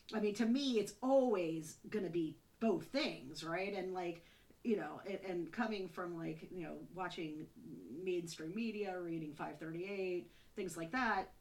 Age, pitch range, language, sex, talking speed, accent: 40-59, 175-220 Hz, English, female, 160 wpm, American